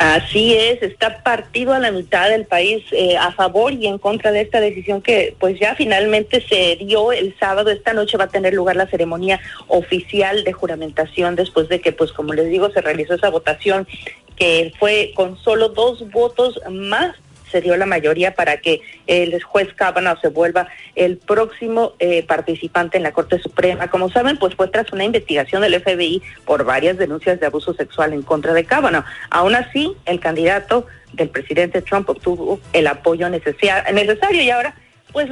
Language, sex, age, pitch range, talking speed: Spanish, female, 40-59, 165-210 Hz, 180 wpm